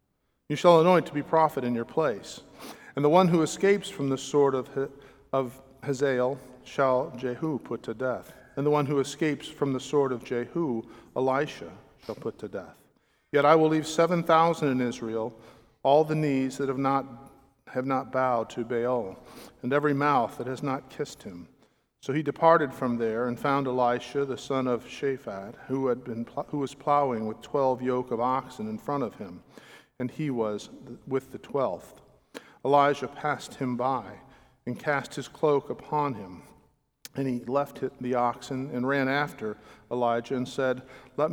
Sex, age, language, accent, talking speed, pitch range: male, 50-69, English, American, 180 wpm, 125-145 Hz